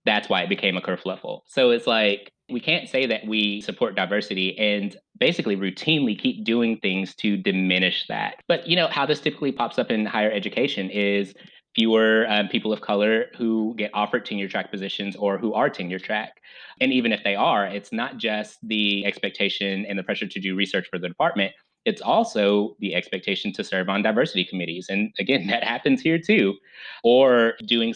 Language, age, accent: English, 20-39, American